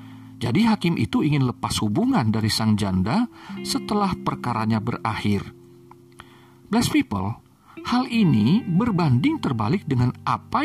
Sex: male